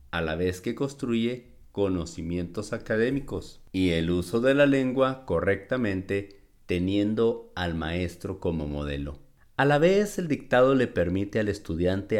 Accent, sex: Mexican, male